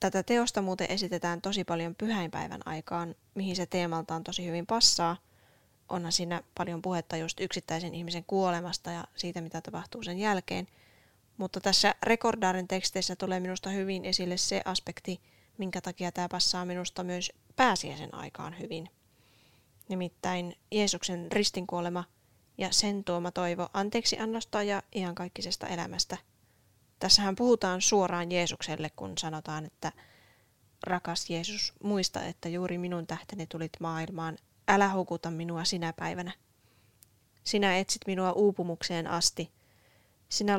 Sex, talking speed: female, 125 wpm